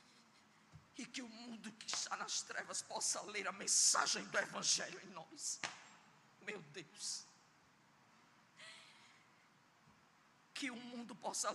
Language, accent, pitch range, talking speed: Portuguese, Brazilian, 170-220 Hz, 115 wpm